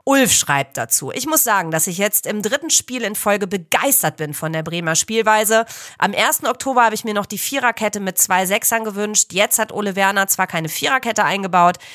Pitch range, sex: 175-225 Hz, female